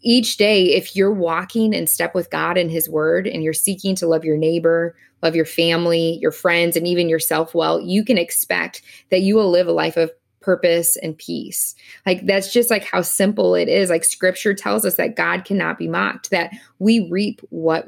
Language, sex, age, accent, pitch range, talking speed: English, female, 20-39, American, 165-200 Hz, 210 wpm